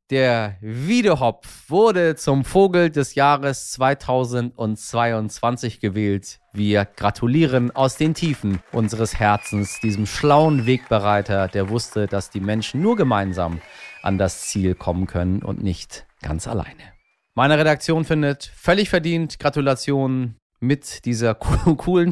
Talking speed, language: 120 wpm, German